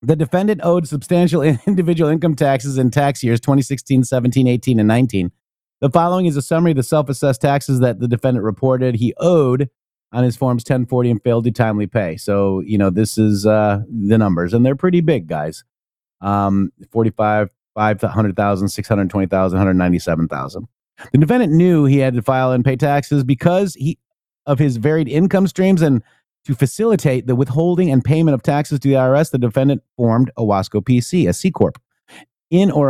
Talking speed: 175 wpm